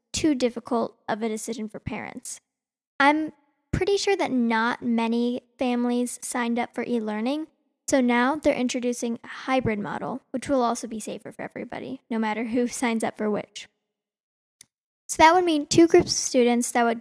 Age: 10-29